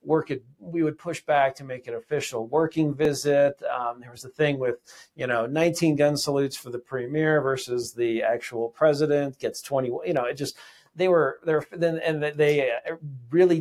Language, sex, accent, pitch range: English, male, American, 125-155 Hz